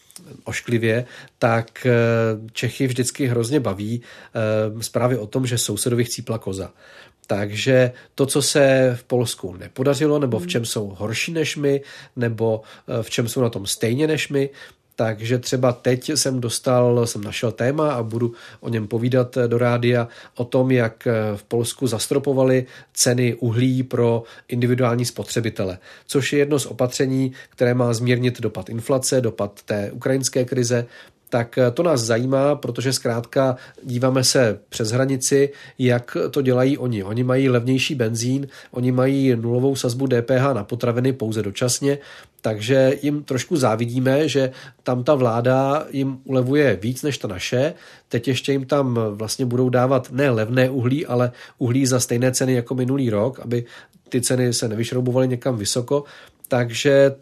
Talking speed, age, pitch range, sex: 150 wpm, 40-59, 120-135 Hz, male